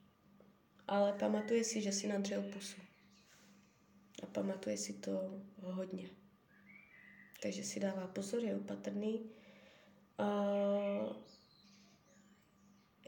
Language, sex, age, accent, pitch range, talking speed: Czech, female, 20-39, native, 195-215 Hz, 85 wpm